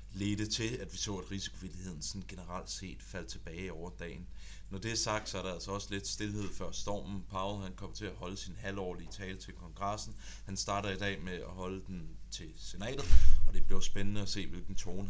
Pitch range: 90-100 Hz